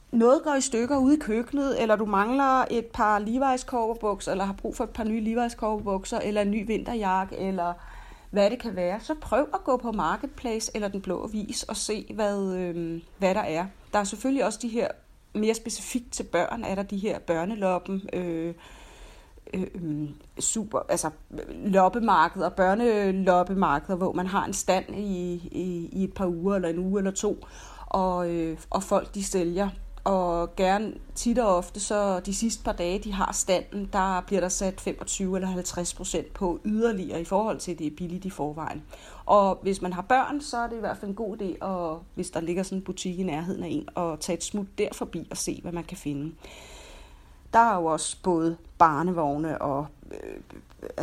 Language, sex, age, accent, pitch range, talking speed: Danish, female, 30-49, native, 175-220 Hz, 195 wpm